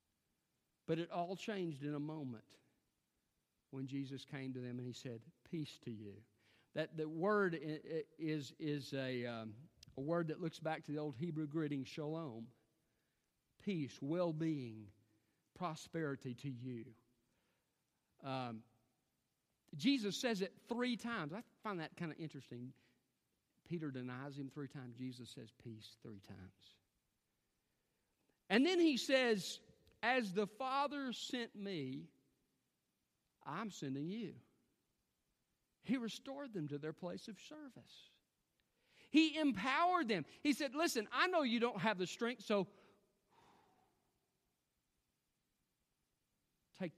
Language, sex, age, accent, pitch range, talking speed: English, male, 50-69, American, 125-200 Hz, 125 wpm